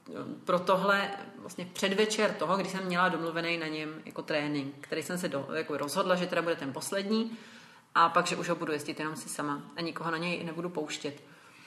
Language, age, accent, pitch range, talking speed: Czech, 30-49, native, 160-185 Hz, 205 wpm